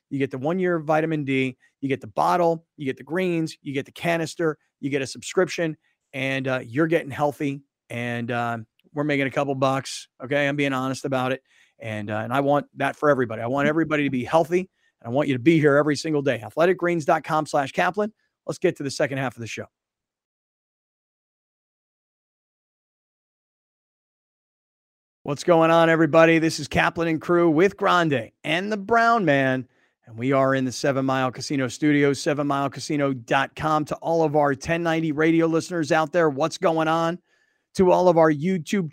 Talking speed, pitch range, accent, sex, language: 180 wpm, 135-170 Hz, American, male, English